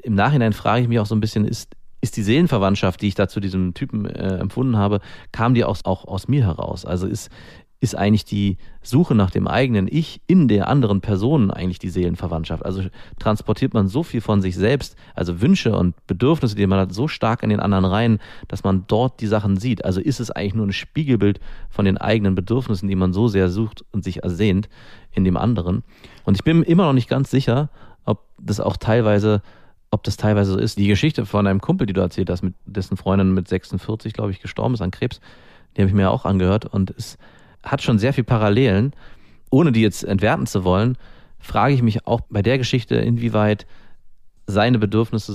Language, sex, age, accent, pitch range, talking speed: German, male, 30-49, German, 95-120 Hz, 215 wpm